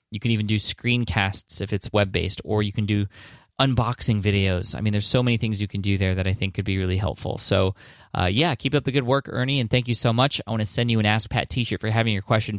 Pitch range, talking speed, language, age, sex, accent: 100-125 Hz, 270 wpm, English, 20-39, male, American